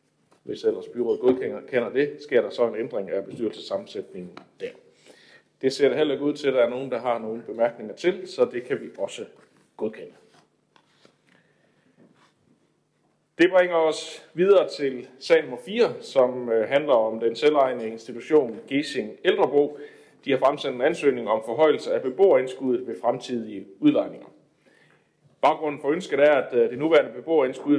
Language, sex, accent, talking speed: Danish, male, native, 150 wpm